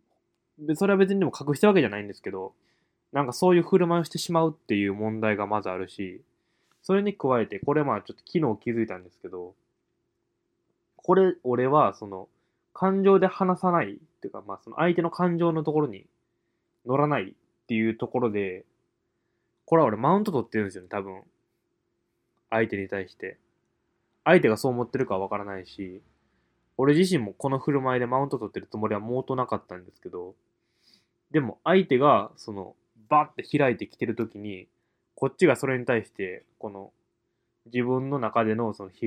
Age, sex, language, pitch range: 20-39, male, Japanese, 100-155 Hz